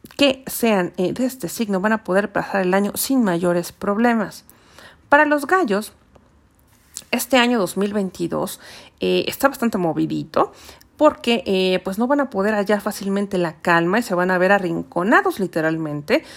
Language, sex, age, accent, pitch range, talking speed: Spanish, female, 40-59, Mexican, 185-240 Hz, 150 wpm